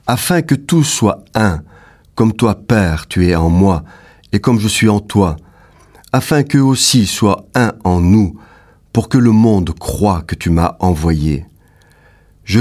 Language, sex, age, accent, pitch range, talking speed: French, male, 50-69, French, 90-125 Hz, 165 wpm